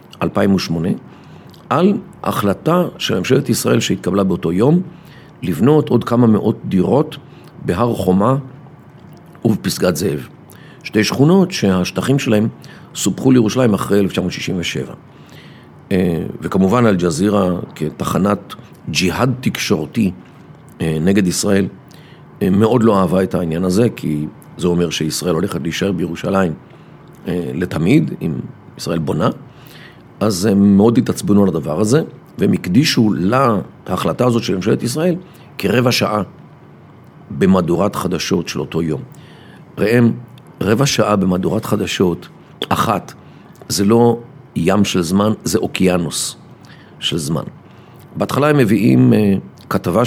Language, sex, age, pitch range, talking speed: Hebrew, male, 50-69, 95-135 Hz, 110 wpm